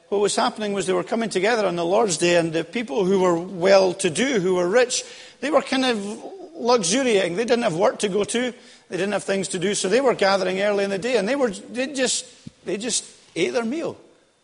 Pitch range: 180-225 Hz